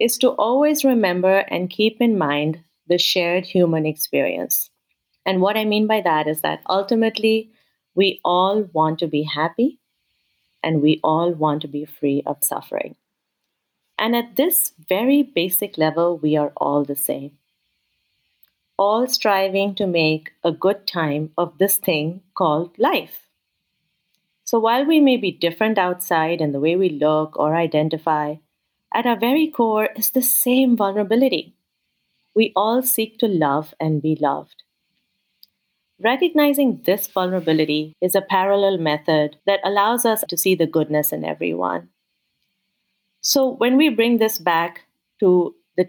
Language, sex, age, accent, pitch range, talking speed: English, female, 30-49, Indian, 160-230 Hz, 150 wpm